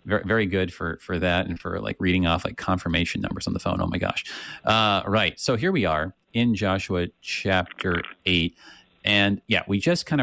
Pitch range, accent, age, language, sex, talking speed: 90-105 Hz, American, 30-49, English, male, 200 wpm